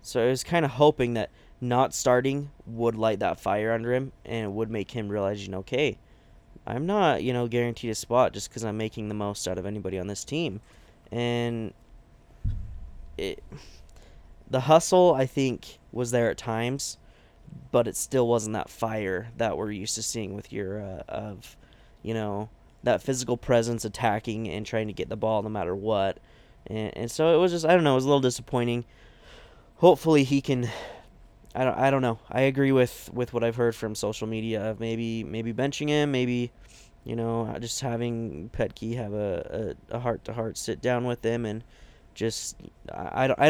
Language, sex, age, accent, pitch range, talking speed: English, male, 20-39, American, 105-125 Hz, 190 wpm